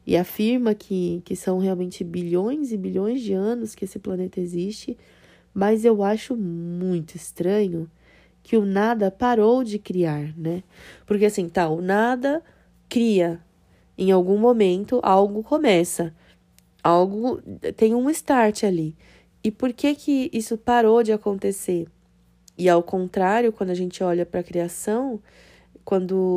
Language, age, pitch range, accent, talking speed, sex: Portuguese, 20-39, 175-225 Hz, Brazilian, 140 wpm, female